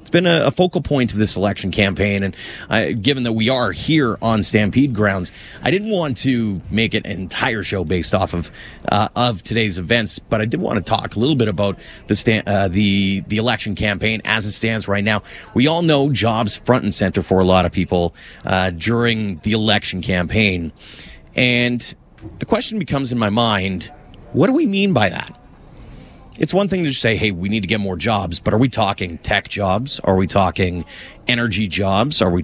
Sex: male